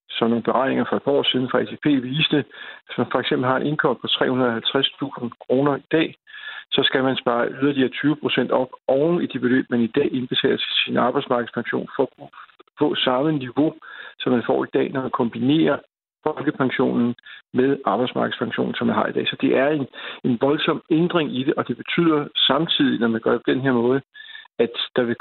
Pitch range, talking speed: 125-150 Hz, 200 wpm